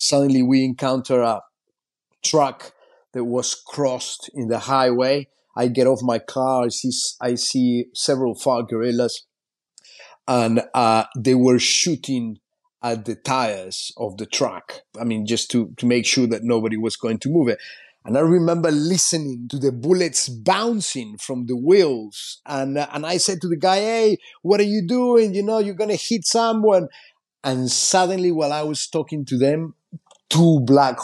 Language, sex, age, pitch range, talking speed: English, male, 30-49, 125-165 Hz, 170 wpm